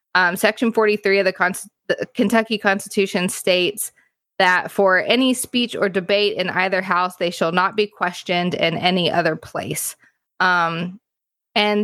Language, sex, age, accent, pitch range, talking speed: English, female, 20-39, American, 180-230 Hz, 145 wpm